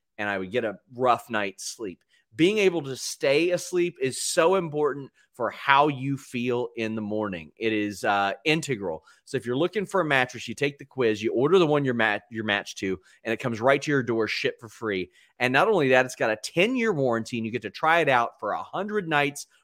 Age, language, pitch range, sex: 30-49, English, 115-165 Hz, male